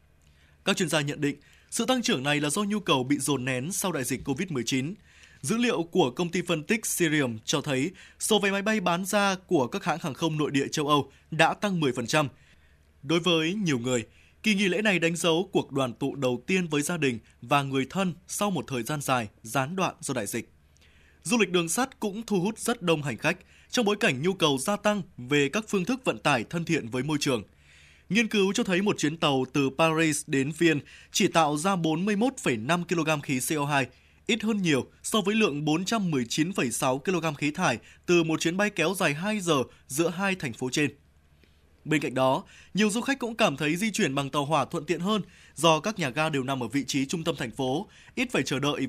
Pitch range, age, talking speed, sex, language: 130-190 Hz, 20-39, 225 wpm, male, Vietnamese